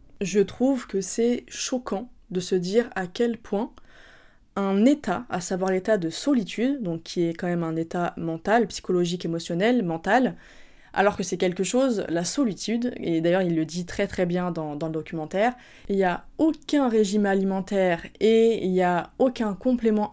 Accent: French